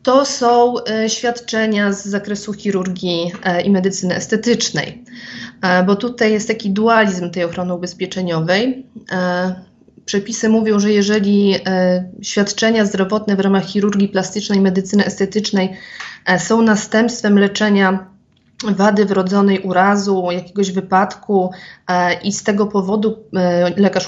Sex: female